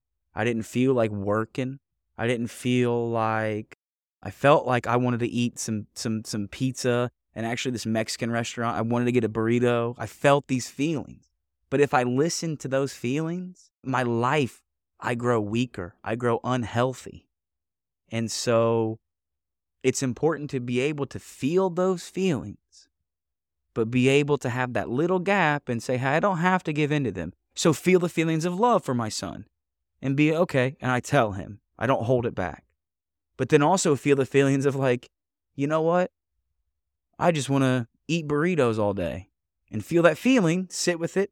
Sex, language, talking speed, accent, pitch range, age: male, English, 185 wpm, American, 100-140 Hz, 20-39